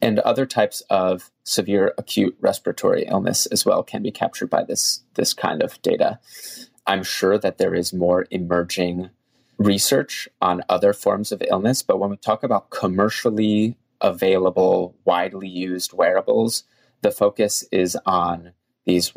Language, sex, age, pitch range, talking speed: English, male, 30-49, 90-110 Hz, 145 wpm